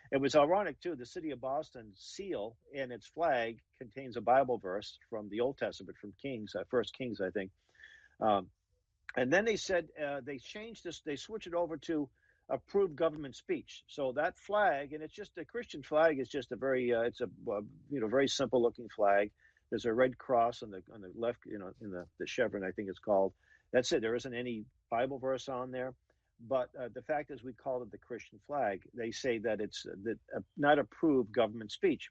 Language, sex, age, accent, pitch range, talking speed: English, male, 50-69, American, 110-150 Hz, 215 wpm